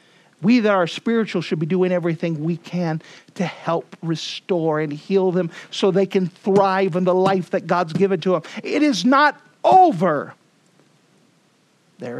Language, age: English, 50-69